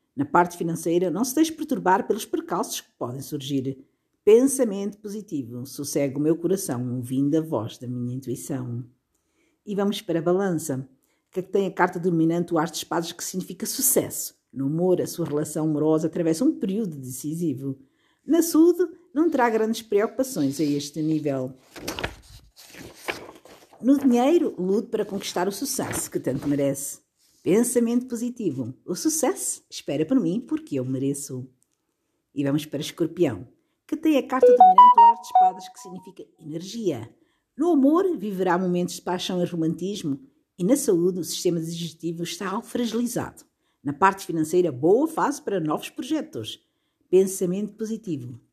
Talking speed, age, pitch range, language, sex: 155 wpm, 50-69, 145-225 Hz, Portuguese, female